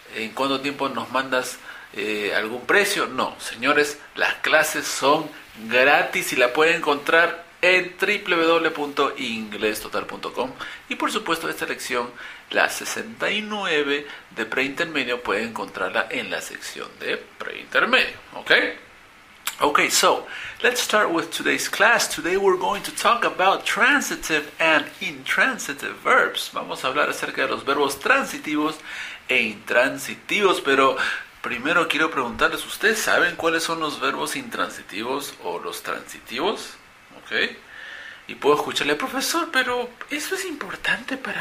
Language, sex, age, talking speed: English, male, 50-69, 130 wpm